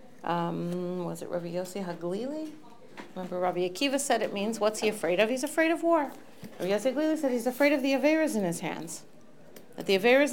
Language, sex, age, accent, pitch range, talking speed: English, female, 40-59, American, 185-245 Hz, 205 wpm